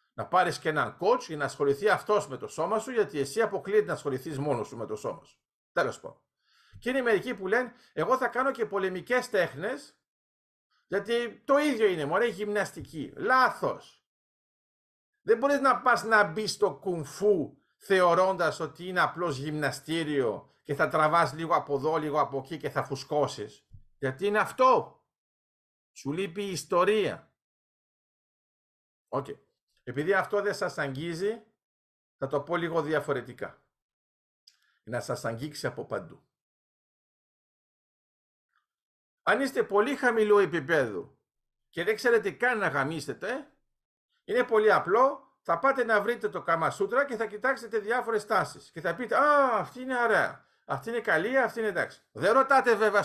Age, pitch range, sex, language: 50-69, 160-245 Hz, male, Greek